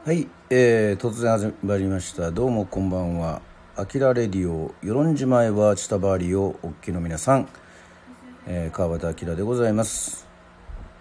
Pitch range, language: 85-120 Hz, Japanese